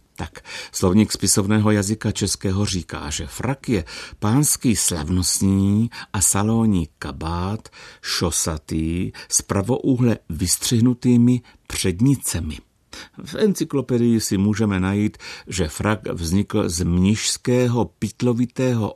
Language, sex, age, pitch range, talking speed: Czech, male, 60-79, 90-115 Hz, 95 wpm